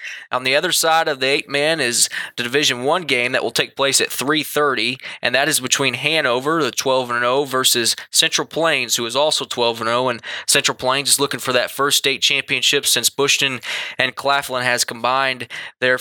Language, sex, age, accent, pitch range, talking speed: English, male, 20-39, American, 125-145 Hz, 185 wpm